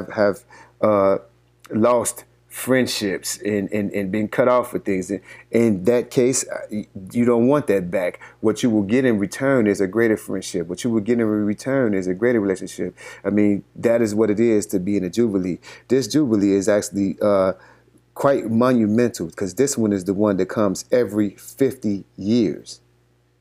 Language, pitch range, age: English, 95-115 Hz, 30-49